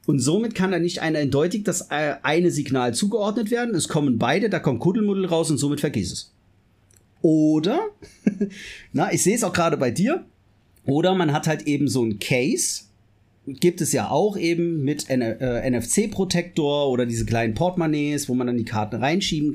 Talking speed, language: 180 wpm, German